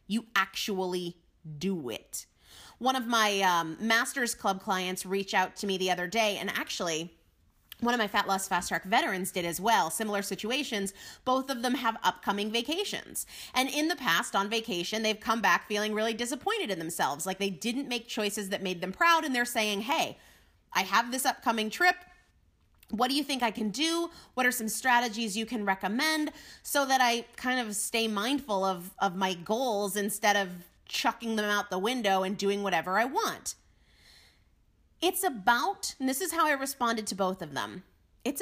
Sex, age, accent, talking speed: female, 30-49, American, 190 wpm